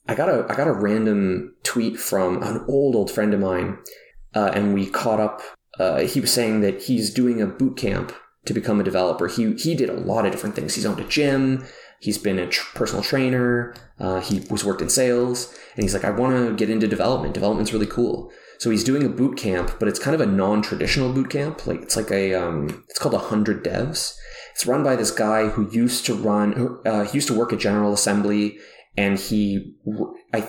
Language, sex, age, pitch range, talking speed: English, male, 20-39, 100-120 Hz, 225 wpm